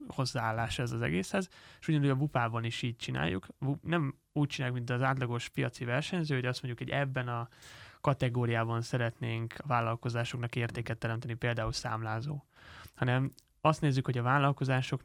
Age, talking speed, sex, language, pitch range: 20-39, 155 wpm, male, Hungarian, 120-140 Hz